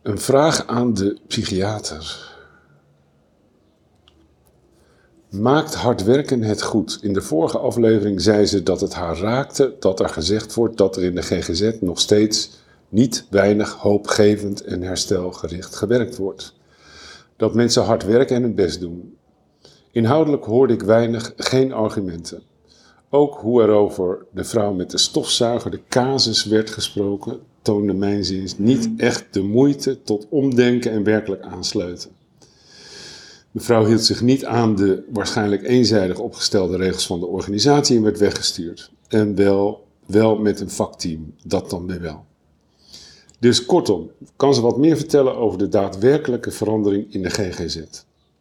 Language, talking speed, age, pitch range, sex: Dutch, 145 wpm, 50-69, 95-120 Hz, male